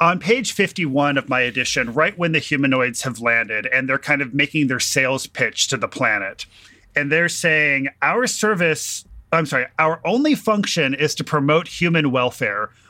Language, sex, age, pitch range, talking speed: English, male, 30-49, 135-180 Hz, 175 wpm